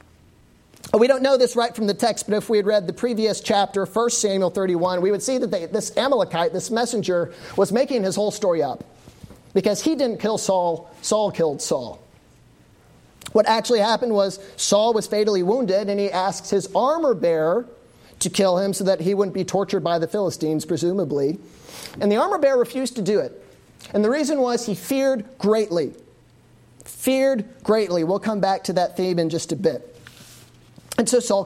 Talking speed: 190 wpm